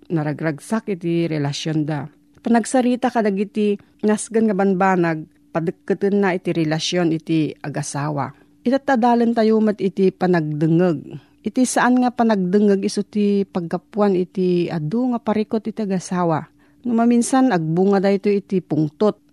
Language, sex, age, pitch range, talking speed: Filipino, female, 40-59, 175-220 Hz, 125 wpm